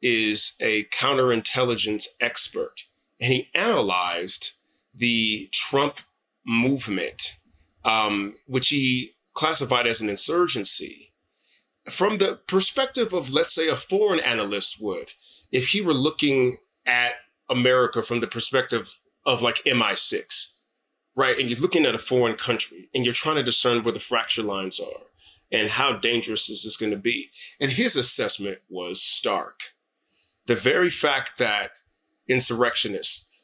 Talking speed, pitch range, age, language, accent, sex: 135 wpm, 110-140 Hz, 30-49, English, American, male